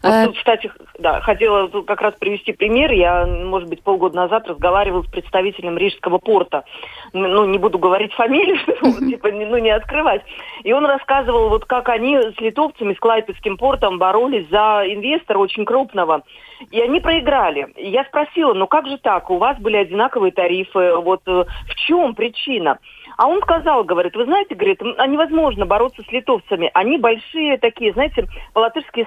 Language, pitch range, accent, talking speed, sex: Russian, 210-285 Hz, native, 160 wpm, female